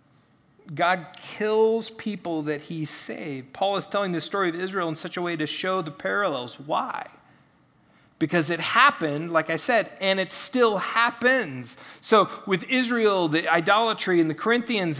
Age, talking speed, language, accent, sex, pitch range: 30-49, 160 wpm, English, American, male, 150-200 Hz